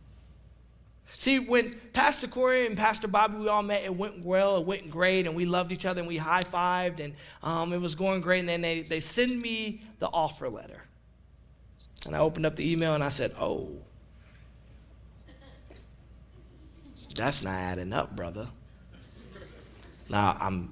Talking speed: 165 wpm